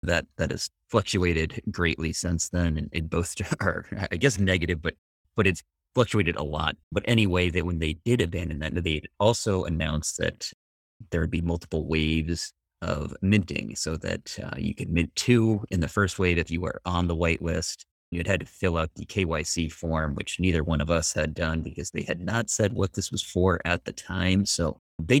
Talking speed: 200 wpm